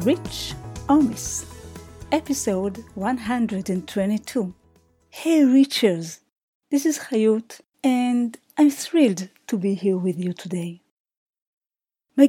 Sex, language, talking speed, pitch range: female, English, 110 wpm, 185-260 Hz